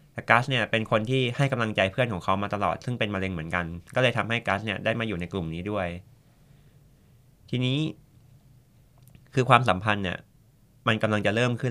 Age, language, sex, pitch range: 20-39, Thai, male, 100-125 Hz